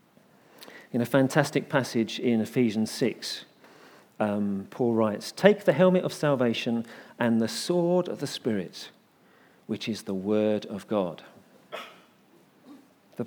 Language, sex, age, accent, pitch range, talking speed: English, male, 50-69, British, 115-180 Hz, 125 wpm